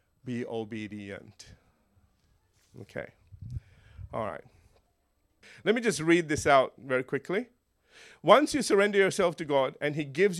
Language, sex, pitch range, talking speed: English, male, 140-205 Hz, 125 wpm